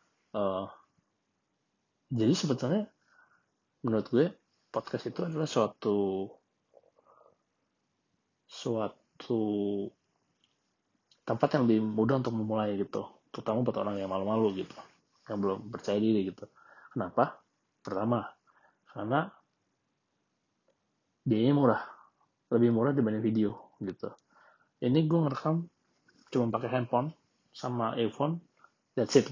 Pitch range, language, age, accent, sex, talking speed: 105-130 Hz, Indonesian, 30-49, native, male, 95 wpm